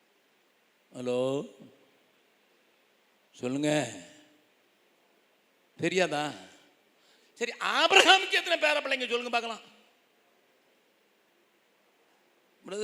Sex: male